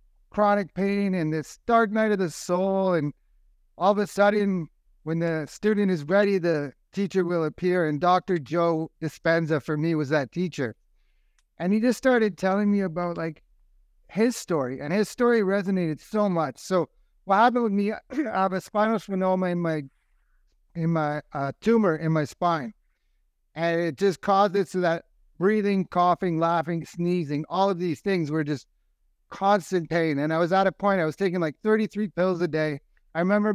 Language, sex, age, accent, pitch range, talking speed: English, male, 60-79, American, 155-195 Hz, 180 wpm